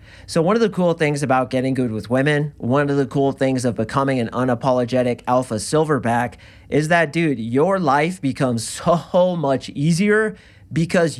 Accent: American